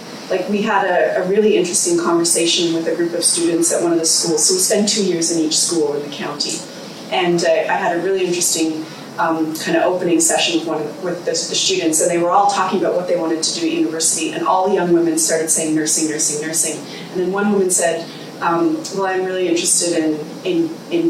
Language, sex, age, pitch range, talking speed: English, female, 30-49, 165-215 Hz, 240 wpm